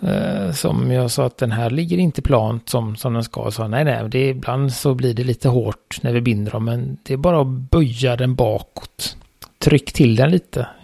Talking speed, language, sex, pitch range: 225 wpm, Swedish, male, 115-140 Hz